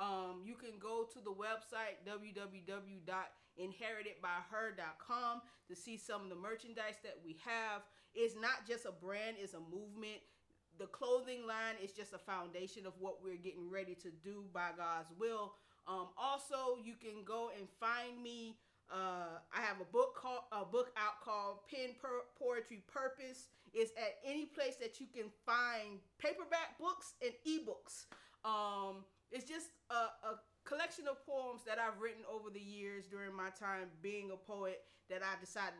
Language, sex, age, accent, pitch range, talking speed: English, female, 30-49, American, 185-235 Hz, 165 wpm